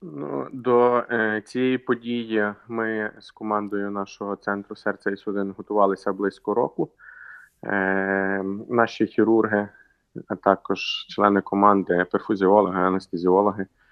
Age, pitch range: 20-39, 100-110 Hz